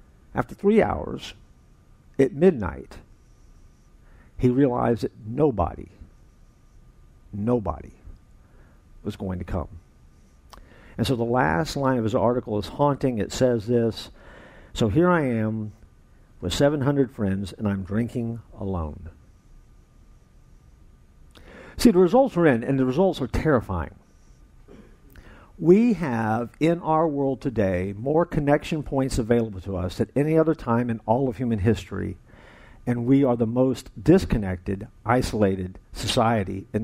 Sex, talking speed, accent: male, 125 wpm, American